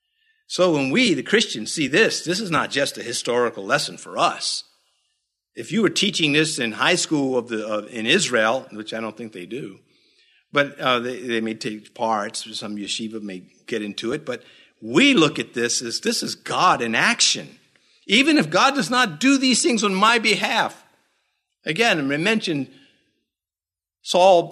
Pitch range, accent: 125-185 Hz, American